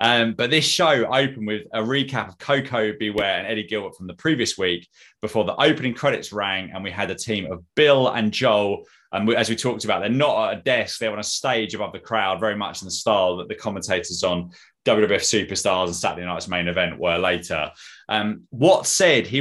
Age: 20-39